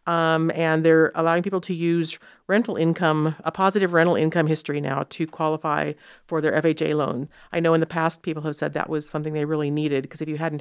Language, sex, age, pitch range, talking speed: English, female, 40-59, 160-200 Hz, 220 wpm